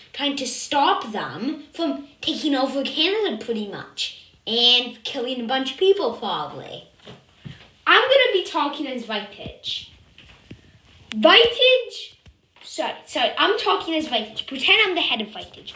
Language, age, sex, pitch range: English, 10-29, female, 265-360 Hz